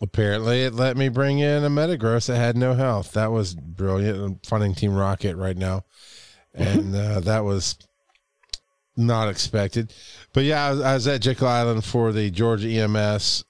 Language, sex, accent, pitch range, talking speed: English, male, American, 100-125 Hz, 180 wpm